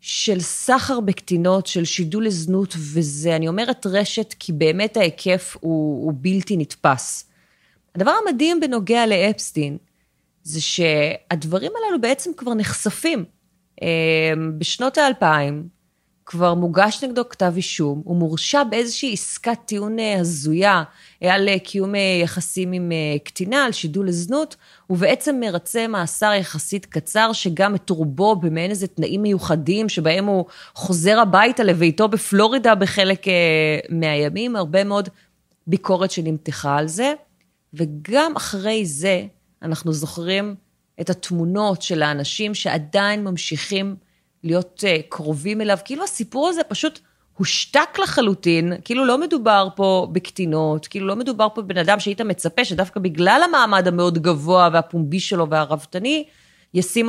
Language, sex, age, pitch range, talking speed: Hebrew, female, 30-49, 165-210 Hz, 120 wpm